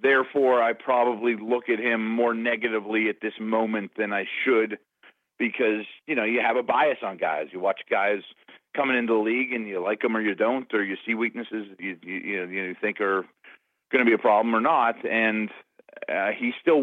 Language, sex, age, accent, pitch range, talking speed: English, male, 40-59, American, 105-125 Hz, 210 wpm